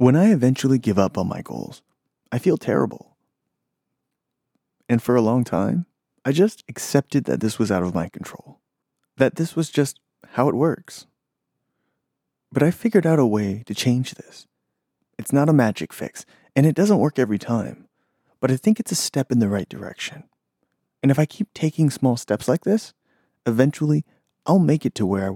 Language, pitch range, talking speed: English, 105-155 Hz, 185 wpm